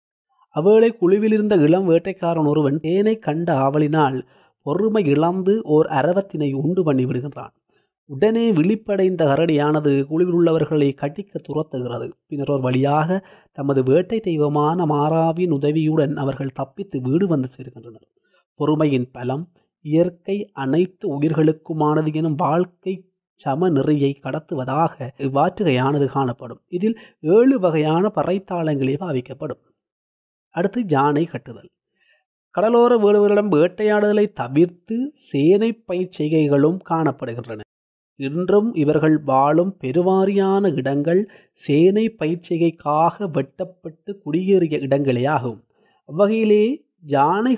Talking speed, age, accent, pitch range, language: 90 wpm, 30-49, native, 140-190 Hz, Tamil